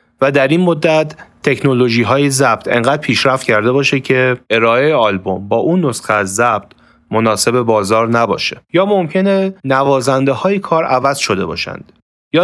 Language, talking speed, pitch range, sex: Persian, 150 wpm, 115-145 Hz, male